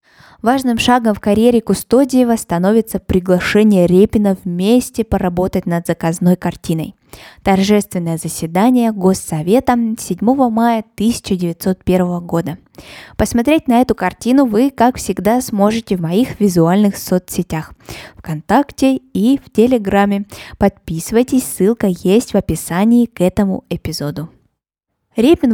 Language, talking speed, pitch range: Russian, 105 wpm, 180-235 Hz